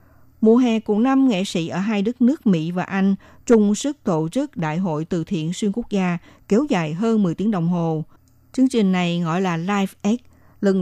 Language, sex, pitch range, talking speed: Vietnamese, female, 175-225 Hz, 210 wpm